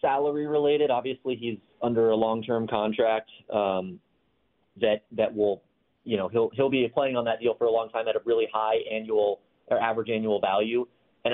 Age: 30-49